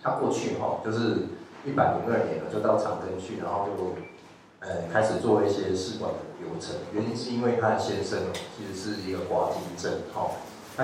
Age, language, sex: 30-49, Chinese, male